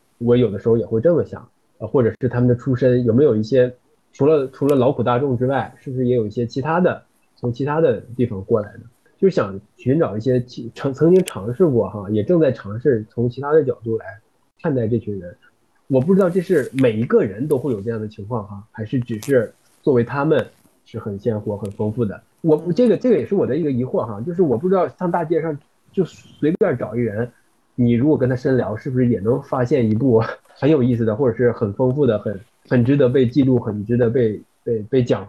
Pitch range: 115-145 Hz